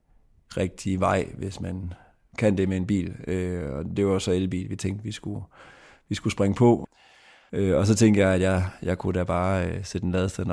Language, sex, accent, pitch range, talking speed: Danish, male, native, 90-100 Hz, 195 wpm